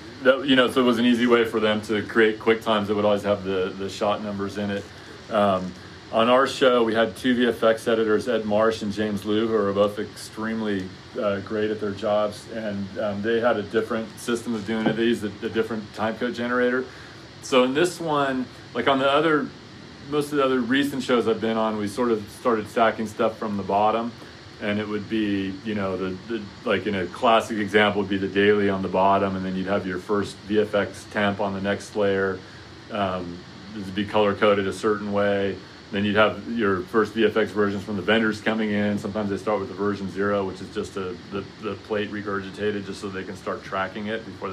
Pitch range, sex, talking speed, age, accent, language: 100-110 Hz, male, 220 wpm, 30-49, American, English